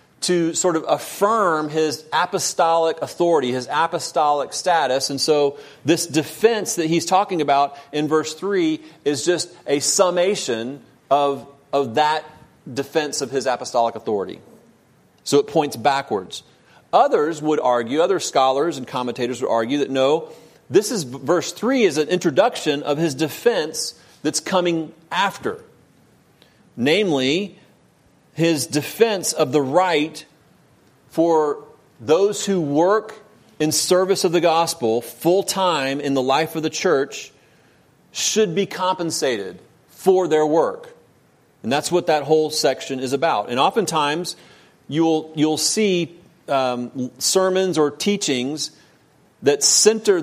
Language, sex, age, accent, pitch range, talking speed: English, male, 40-59, American, 140-175 Hz, 130 wpm